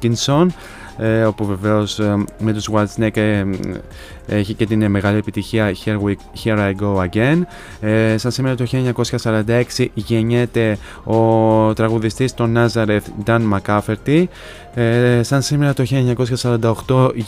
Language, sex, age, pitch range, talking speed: Greek, male, 20-39, 105-115 Hz, 130 wpm